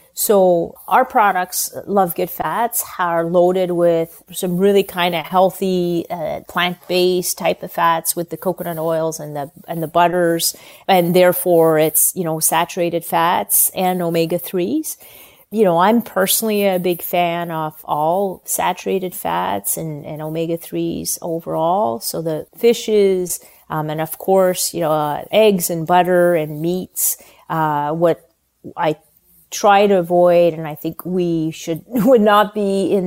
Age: 30-49